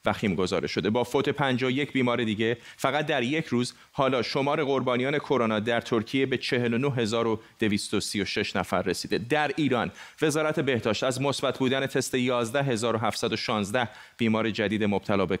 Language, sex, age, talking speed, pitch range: Persian, male, 30-49, 150 wpm, 105-130 Hz